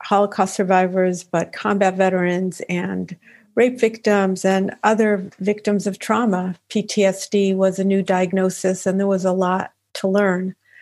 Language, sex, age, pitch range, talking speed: English, female, 50-69, 185-205 Hz, 140 wpm